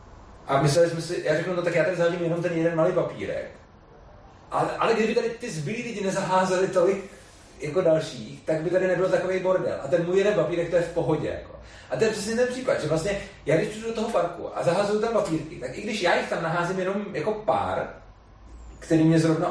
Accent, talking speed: native, 230 wpm